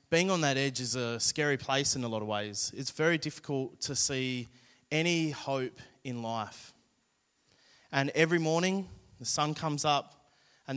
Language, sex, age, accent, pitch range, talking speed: English, male, 20-39, Australian, 125-150 Hz, 165 wpm